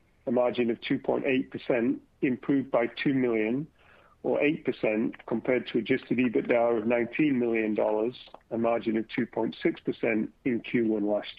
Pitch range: 110-130 Hz